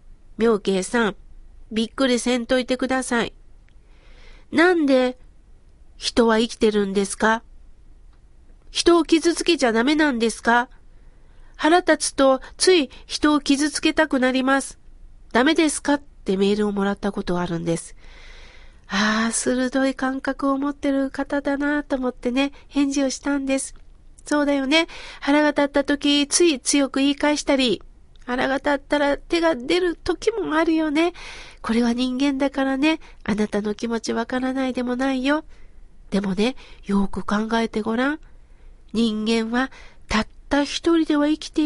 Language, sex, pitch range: Japanese, female, 240-310 Hz